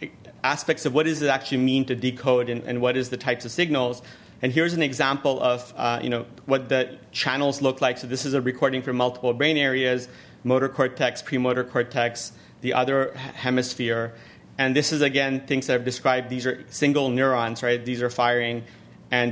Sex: male